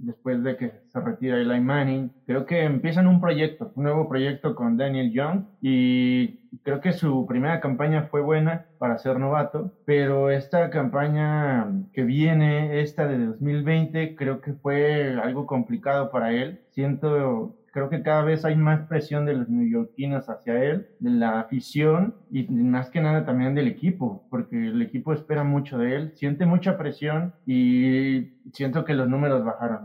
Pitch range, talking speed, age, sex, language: 135-180 Hz, 165 wpm, 30-49, male, Spanish